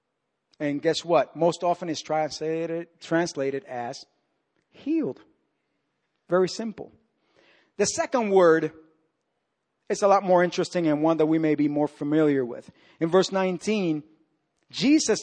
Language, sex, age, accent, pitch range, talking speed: English, male, 50-69, American, 175-275 Hz, 130 wpm